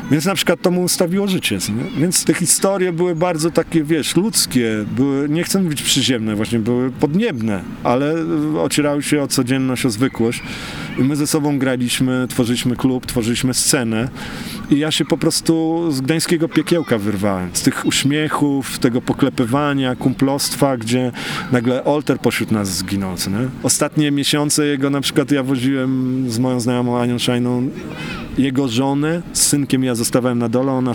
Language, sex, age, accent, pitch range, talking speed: Polish, male, 40-59, native, 120-145 Hz, 155 wpm